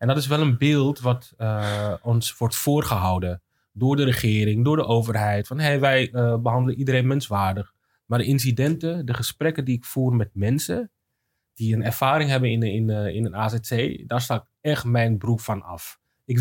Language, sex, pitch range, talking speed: Dutch, male, 110-135 Hz, 185 wpm